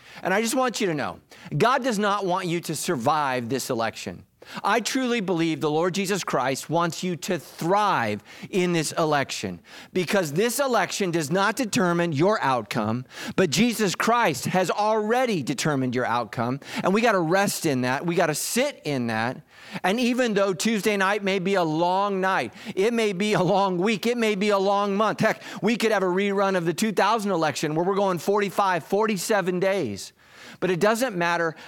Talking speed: 190 wpm